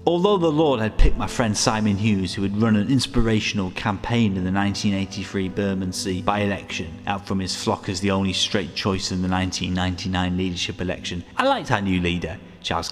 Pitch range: 95-115 Hz